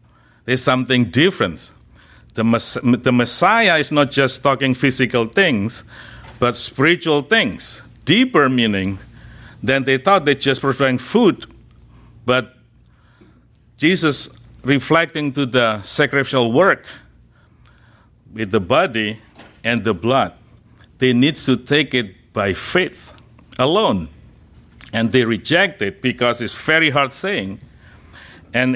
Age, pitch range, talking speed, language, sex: 50-69, 115-145 Hz, 115 wpm, English, male